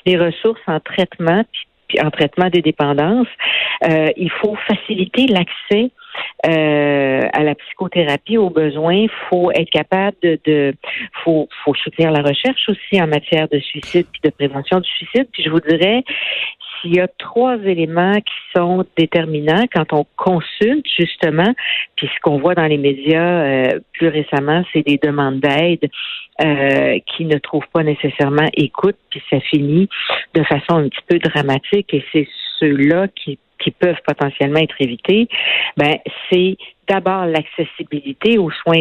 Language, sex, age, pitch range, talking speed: French, female, 60-79, 150-185 Hz, 160 wpm